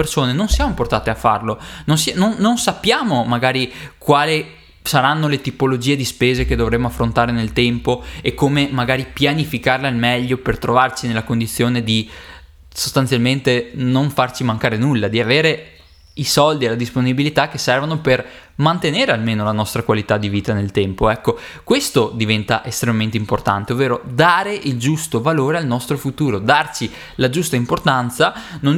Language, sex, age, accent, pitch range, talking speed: Italian, male, 20-39, native, 115-150 Hz, 160 wpm